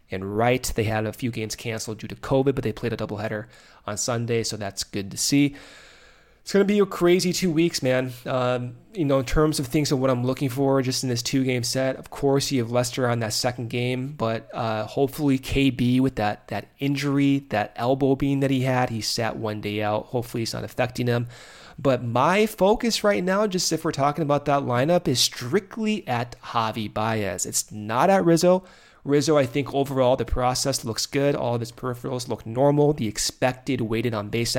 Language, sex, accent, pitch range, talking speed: English, male, American, 115-145 Hz, 215 wpm